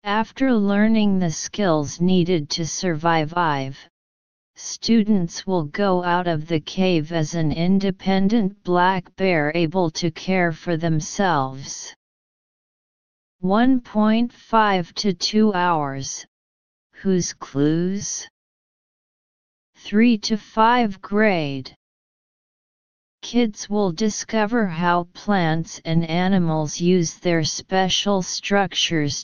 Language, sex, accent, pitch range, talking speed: English, female, American, 160-200 Hz, 95 wpm